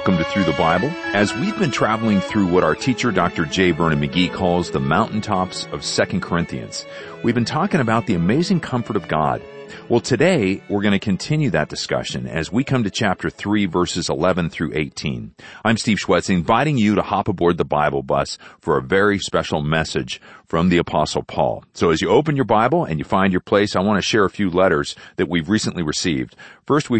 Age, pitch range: 40-59, 85-110 Hz